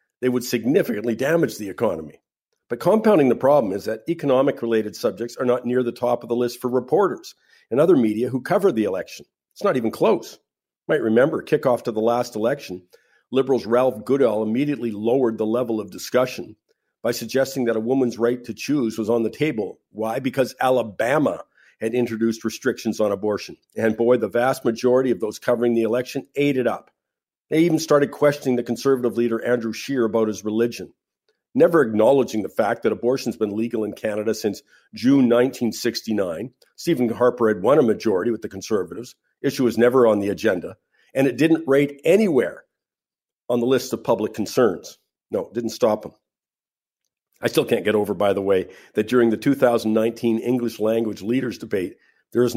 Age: 50-69